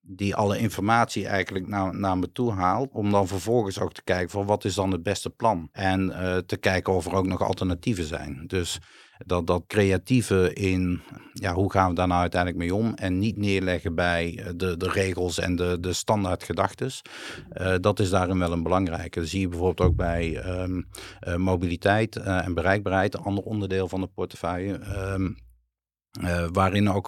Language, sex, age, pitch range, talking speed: Dutch, male, 50-69, 90-105 Hz, 185 wpm